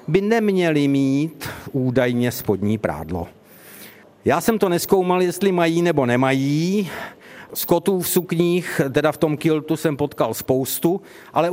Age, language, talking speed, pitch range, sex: 50-69, Czech, 130 wpm, 135-175 Hz, male